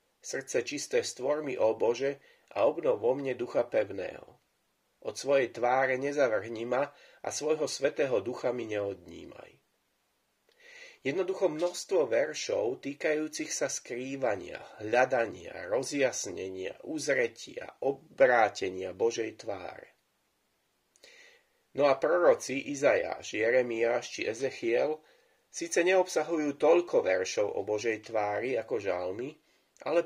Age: 30-49